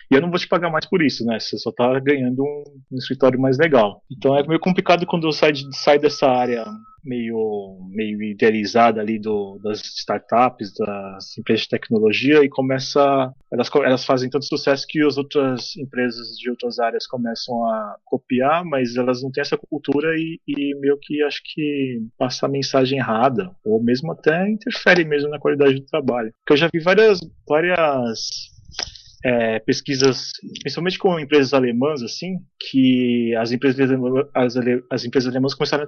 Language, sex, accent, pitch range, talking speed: Portuguese, male, Brazilian, 125-150 Hz, 170 wpm